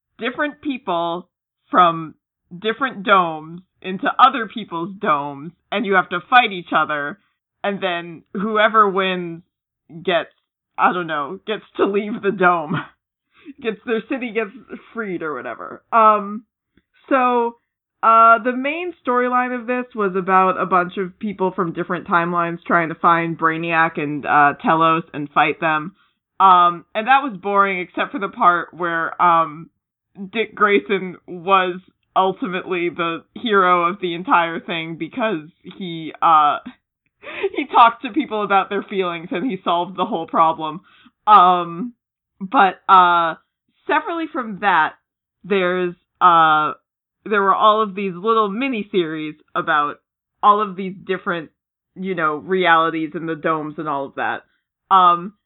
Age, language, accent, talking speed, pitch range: 20-39, English, American, 140 wpm, 170-225 Hz